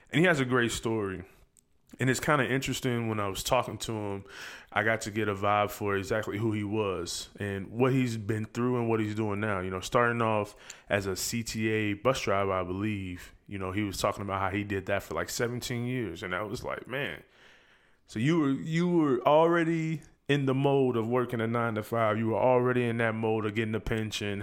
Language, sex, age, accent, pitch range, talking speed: English, male, 20-39, American, 100-120 Hz, 225 wpm